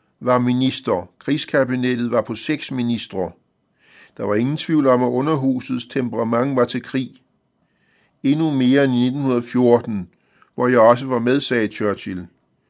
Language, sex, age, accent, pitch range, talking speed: Danish, male, 50-69, native, 115-135 Hz, 135 wpm